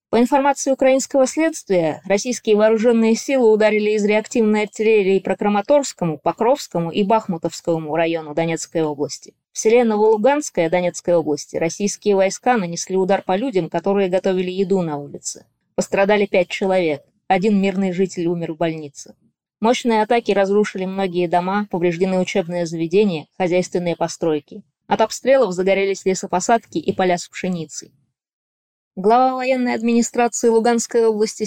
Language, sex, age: Russian, female, 20-39